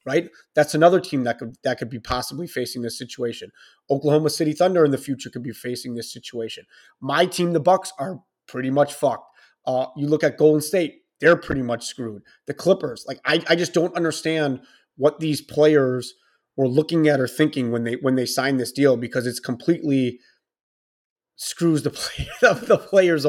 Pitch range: 125-160 Hz